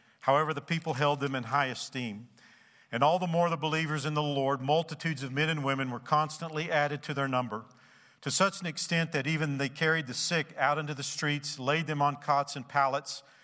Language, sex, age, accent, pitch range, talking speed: English, male, 50-69, American, 140-160 Hz, 215 wpm